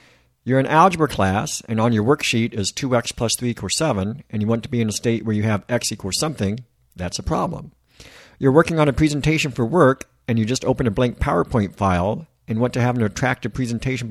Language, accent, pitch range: English, American, 105-130 Hz